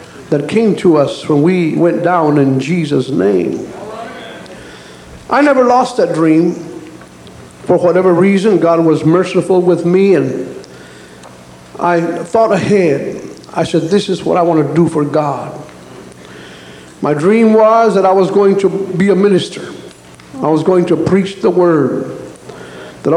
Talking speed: 150 wpm